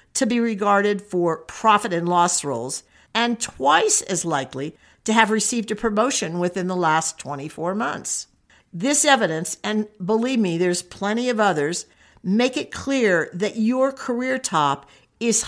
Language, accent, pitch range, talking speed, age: English, American, 170-235 Hz, 150 wpm, 50-69